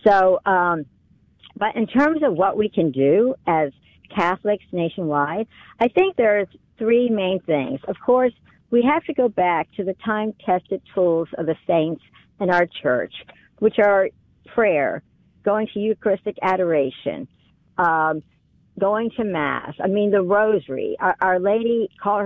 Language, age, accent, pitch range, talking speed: English, 50-69, American, 160-215 Hz, 150 wpm